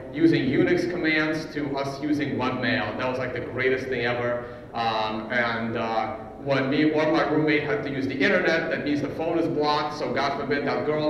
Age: 40-59